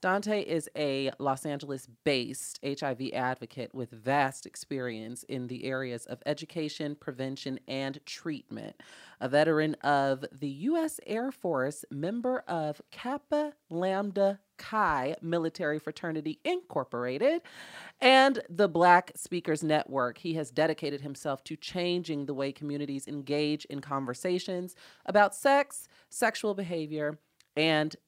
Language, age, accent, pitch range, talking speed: English, 30-49, American, 135-180 Hz, 120 wpm